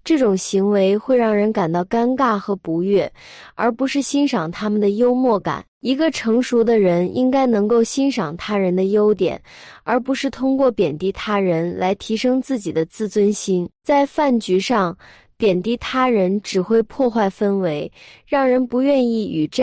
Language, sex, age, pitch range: Chinese, female, 20-39, 190-250 Hz